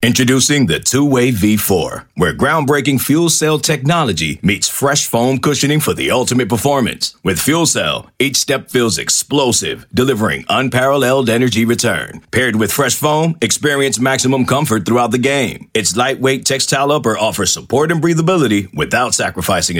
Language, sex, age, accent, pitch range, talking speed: English, male, 40-59, American, 110-145 Hz, 145 wpm